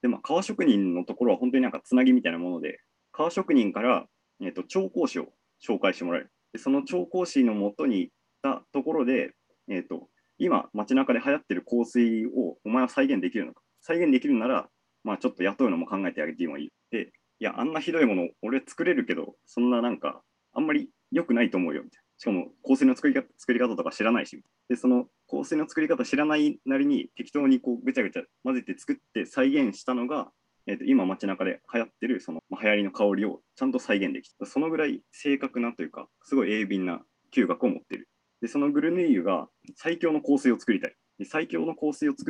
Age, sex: 30-49, male